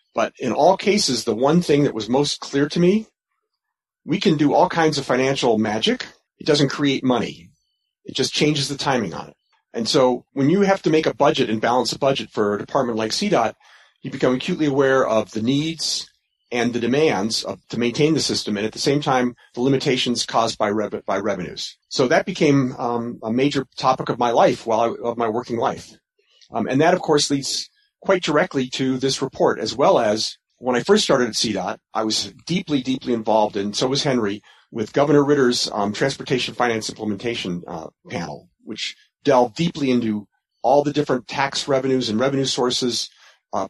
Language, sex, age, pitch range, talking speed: English, male, 40-59, 120-145 Hz, 200 wpm